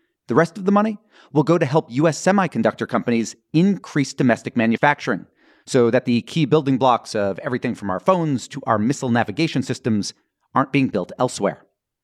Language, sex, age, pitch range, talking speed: English, male, 30-49, 125-165 Hz, 175 wpm